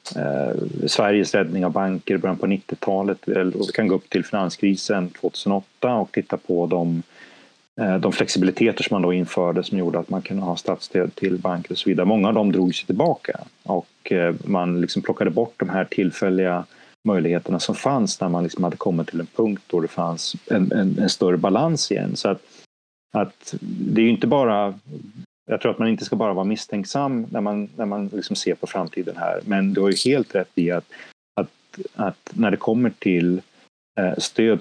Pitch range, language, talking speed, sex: 90-100 Hz, Swedish, 200 wpm, male